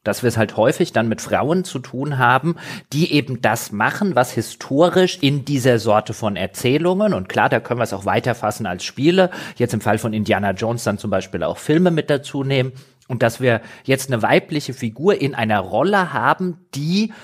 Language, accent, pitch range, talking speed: German, German, 115-150 Hz, 200 wpm